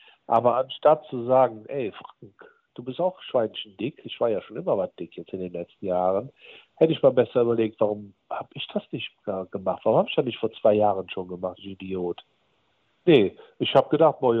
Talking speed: 210 wpm